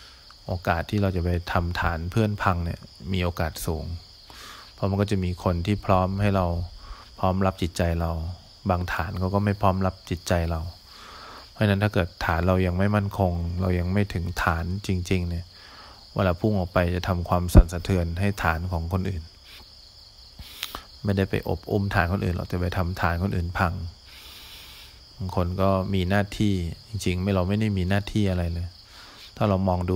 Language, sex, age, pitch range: English, male, 20-39, 85-100 Hz